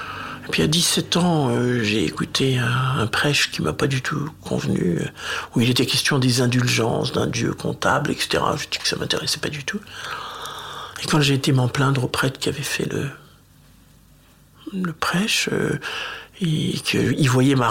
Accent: French